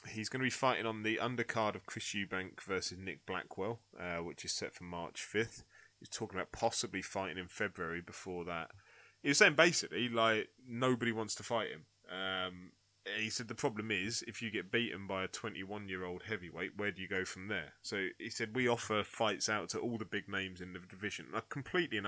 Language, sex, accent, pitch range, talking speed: English, male, British, 90-110 Hz, 210 wpm